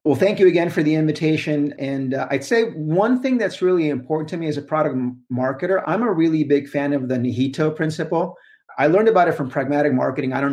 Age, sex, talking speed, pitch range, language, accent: 30-49, male, 235 wpm, 125-150 Hz, English, American